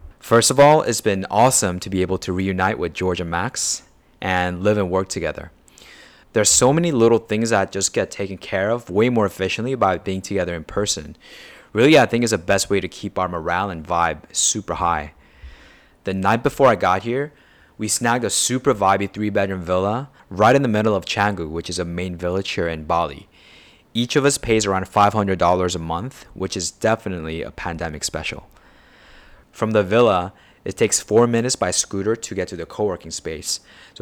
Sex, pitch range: male, 90-110 Hz